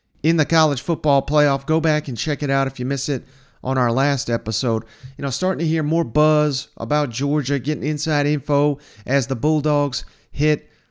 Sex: male